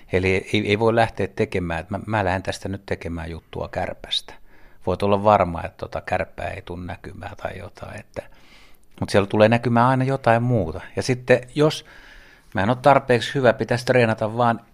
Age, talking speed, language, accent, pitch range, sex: 60-79, 175 wpm, Finnish, native, 90-115 Hz, male